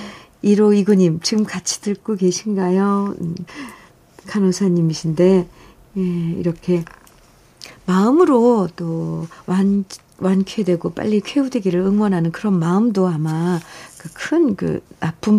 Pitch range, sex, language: 160-205 Hz, female, Korean